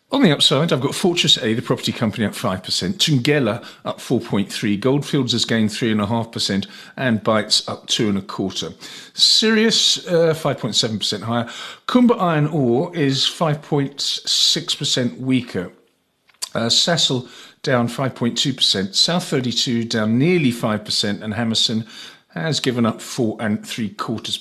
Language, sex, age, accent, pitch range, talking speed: English, male, 50-69, British, 110-150 Hz, 125 wpm